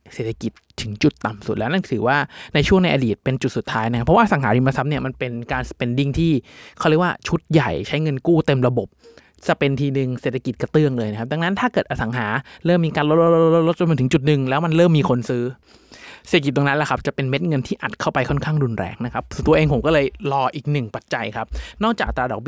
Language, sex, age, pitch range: Thai, male, 20-39, 120-155 Hz